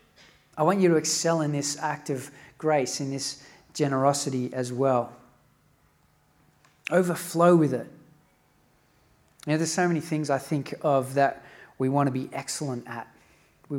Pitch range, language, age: 135-165 Hz, English, 30-49